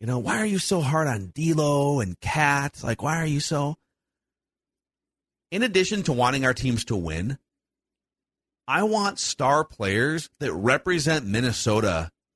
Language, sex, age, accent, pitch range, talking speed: English, male, 40-59, American, 100-150 Hz, 150 wpm